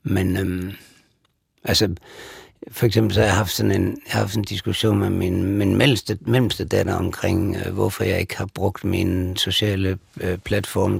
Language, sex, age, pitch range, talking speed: Danish, male, 60-79, 95-110 Hz, 180 wpm